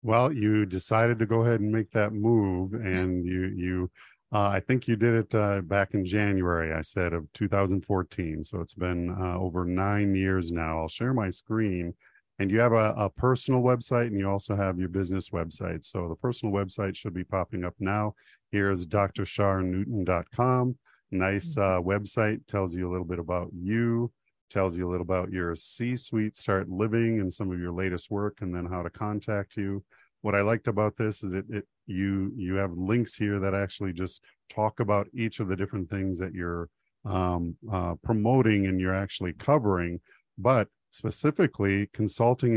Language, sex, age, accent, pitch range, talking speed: English, male, 50-69, American, 90-110 Hz, 185 wpm